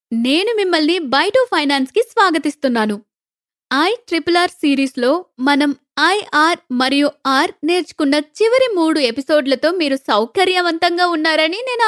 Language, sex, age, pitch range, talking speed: Telugu, female, 20-39, 265-350 Hz, 110 wpm